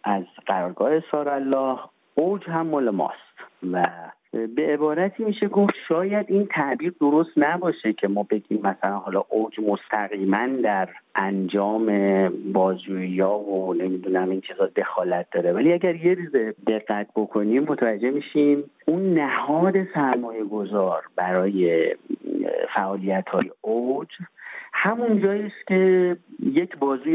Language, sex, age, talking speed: English, male, 50-69, 120 wpm